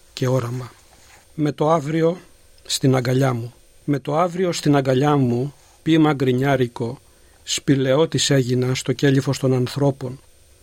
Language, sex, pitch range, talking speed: Greek, male, 125-145 Hz, 120 wpm